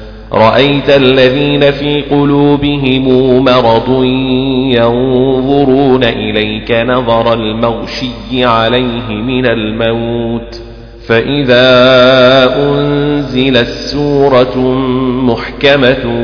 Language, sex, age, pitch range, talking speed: Arabic, male, 40-59, 115-135 Hz, 60 wpm